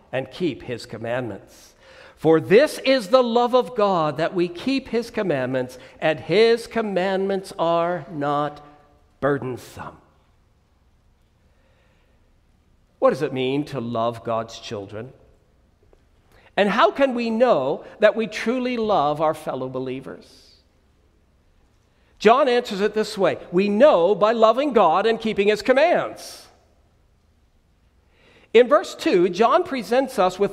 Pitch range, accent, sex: 145-245 Hz, American, male